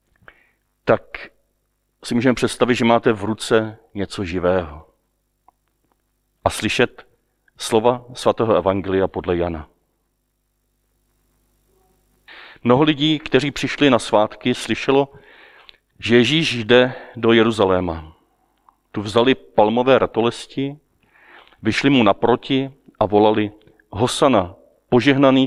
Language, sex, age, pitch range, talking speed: Czech, male, 40-59, 95-130 Hz, 95 wpm